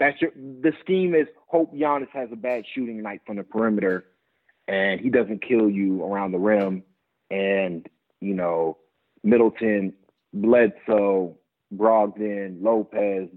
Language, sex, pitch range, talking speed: English, male, 100-165 Hz, 135 wpm